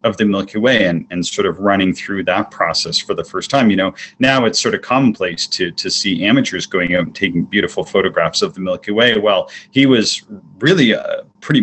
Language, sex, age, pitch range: English, male, 30-49, 95-120 Hz